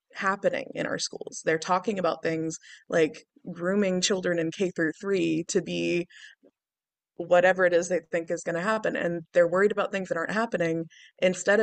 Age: 20-39